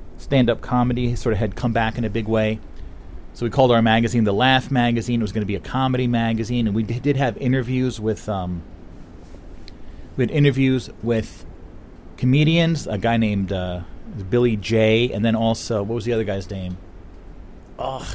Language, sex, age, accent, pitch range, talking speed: English, male, 40-59, American, 95-145 Hz, 185 wpm